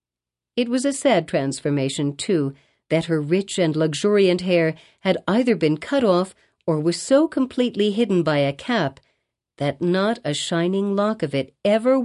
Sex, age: female, 50-69